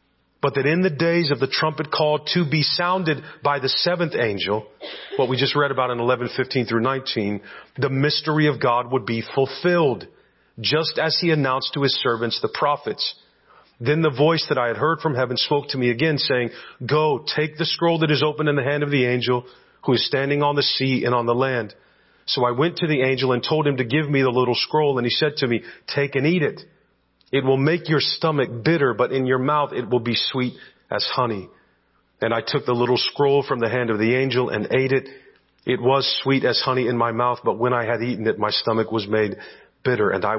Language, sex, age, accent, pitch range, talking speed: English, male, 40-59, American, 115-145 Hz, 230 wpm